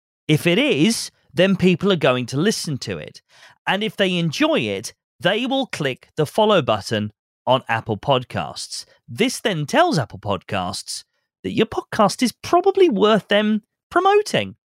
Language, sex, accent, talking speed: English, male, British, 155 wpm